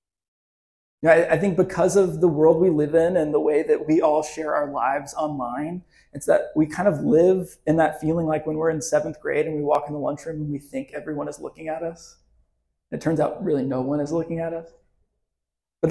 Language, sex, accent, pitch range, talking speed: English, male, American, 155-185 Hz, 225 wpm